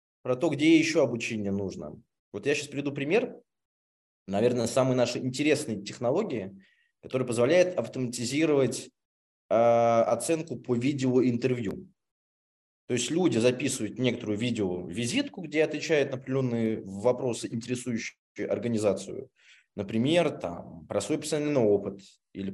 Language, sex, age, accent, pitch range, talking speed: Russian, male, 20-39, native, 110-145 Hz, 115 wpm